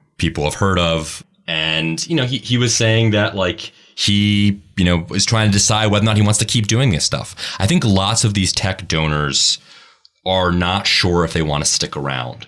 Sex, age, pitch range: male, 30-49, 80-100 Hz